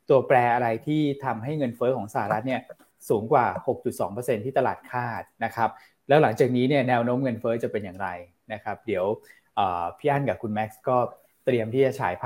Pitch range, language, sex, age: 110-135 Hz, Thai, male, 20-39